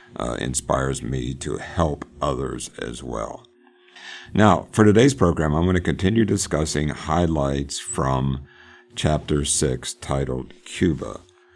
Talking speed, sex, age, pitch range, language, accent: 120 wpm, male, 60-79, 70-90 Hz, English, American